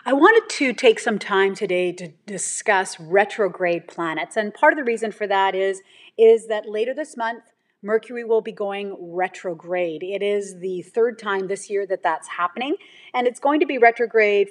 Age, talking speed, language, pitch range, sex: 30-49, 185 wpm, English, 190-240 Hz, female